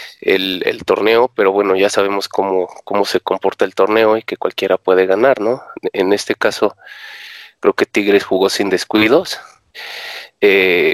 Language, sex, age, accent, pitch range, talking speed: Spanish, male, 30-49, Mexican, 100-125 Hz, 160 wpm